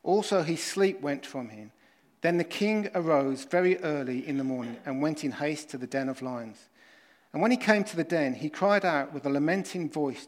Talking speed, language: 220 wpm, English